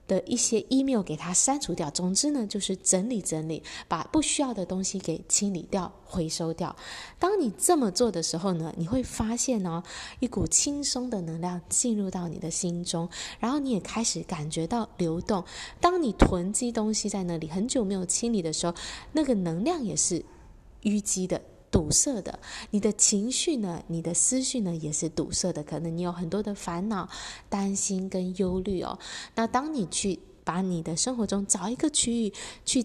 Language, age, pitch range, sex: Chinese, 20-39, 175-235 Hz, female